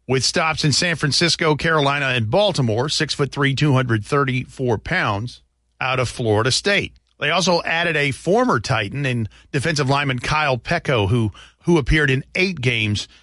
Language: English